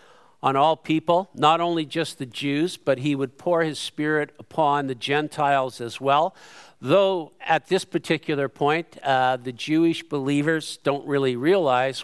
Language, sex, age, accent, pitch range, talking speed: English, male, 50-69, American, 140-170 Hz, 155 wpm